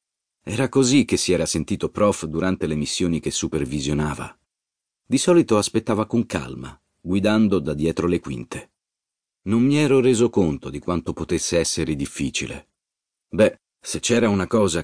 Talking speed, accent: 150 wpm, native